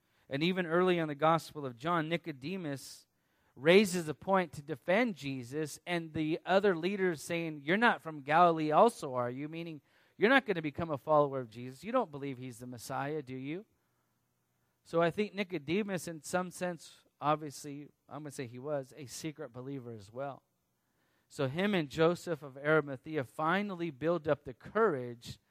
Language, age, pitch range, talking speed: English, 30-49, 130-170 Hz, 175 wpm